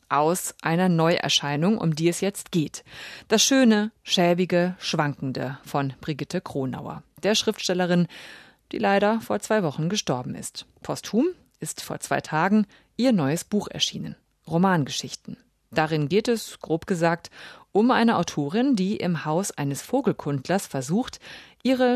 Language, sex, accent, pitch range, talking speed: German, female, German, 160-210 Hz, 135 wpm